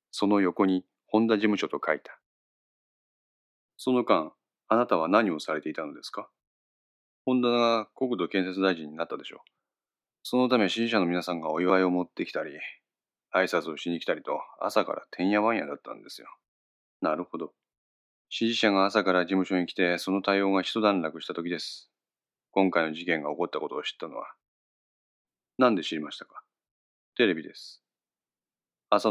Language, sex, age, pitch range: Japanese, male, 30-49, 85-105 Hz